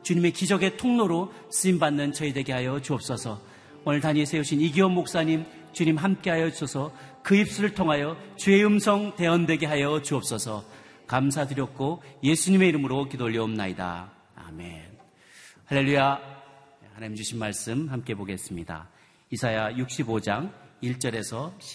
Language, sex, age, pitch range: Korean, male, 40-59, 105-150 Hz